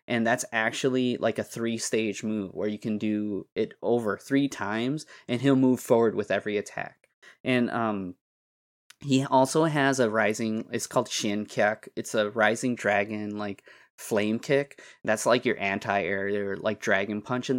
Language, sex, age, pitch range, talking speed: English, male, 20-39, 105-130 Hz, 170 wpm